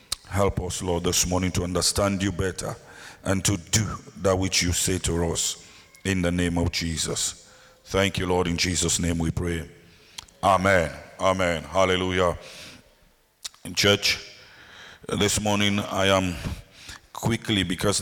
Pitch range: 90-105 Hz